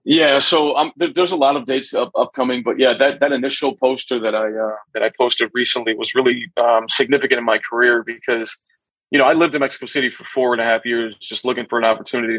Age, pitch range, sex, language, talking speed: 40-59, 115-140 Hz, male, English, 235 wpm